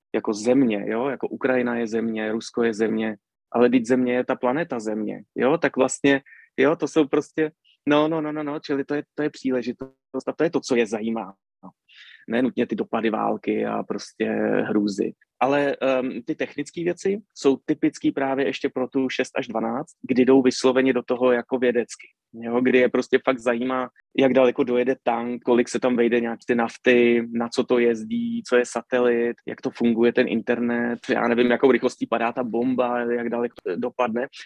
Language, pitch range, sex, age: Czech, 120-140 Hz, male, 20-39